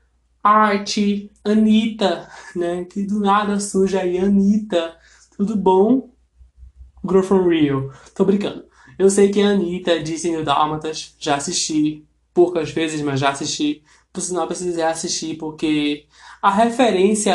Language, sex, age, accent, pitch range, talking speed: Portuguese, male, 20-39, Brazilian, 155-195 Hz, 130 wpm